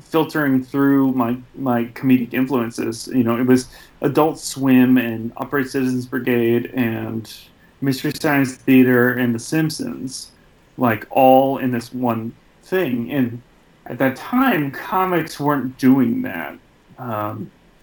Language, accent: English, American